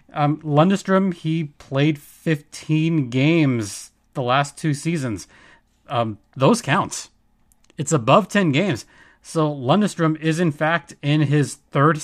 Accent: American